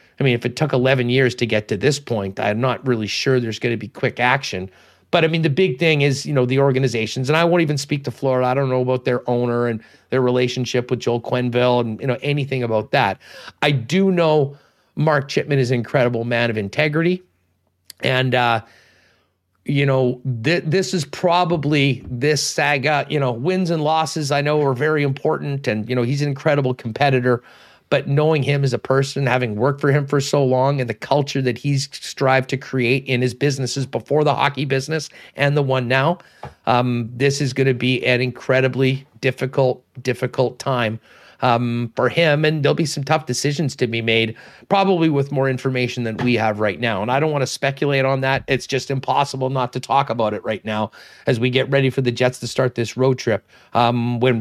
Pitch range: 120-145 Hz